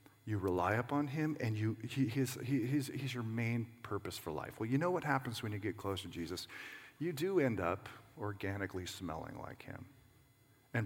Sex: male